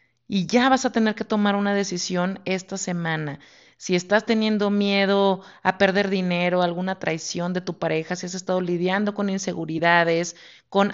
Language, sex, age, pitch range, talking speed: Spanish, female, 30-49, 175-225 Hz, 165 wpm